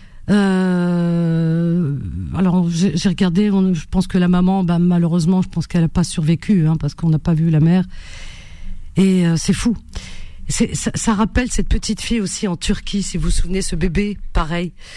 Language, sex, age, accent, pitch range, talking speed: French, female, 50-69, French, 165-205 Hz, 185 wpm